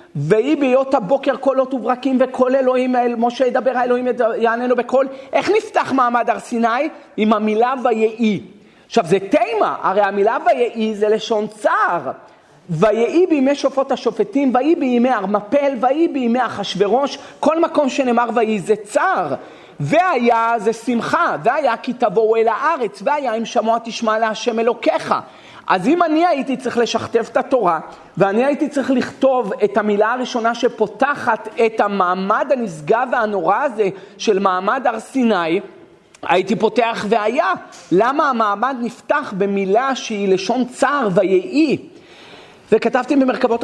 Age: 40-59